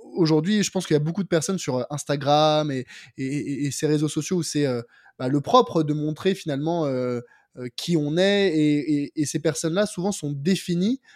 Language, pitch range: French, 145-180 Hz